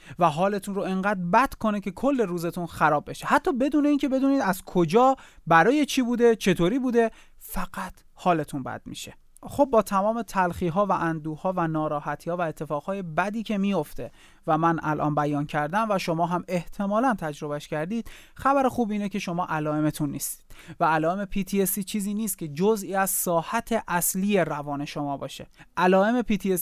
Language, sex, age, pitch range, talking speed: Persian, male, 30-49, 165-220 Hz, 160 wpm